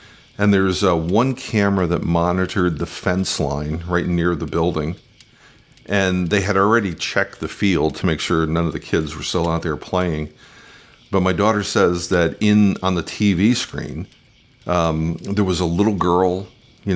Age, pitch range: 50-69, 85-100 Hz